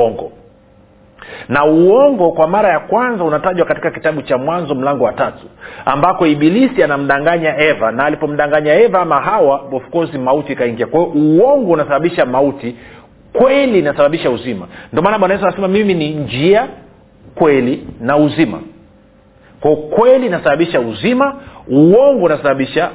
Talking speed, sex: 135 wpm, male